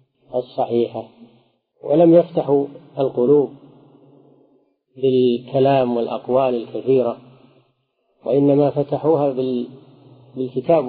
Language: Arabic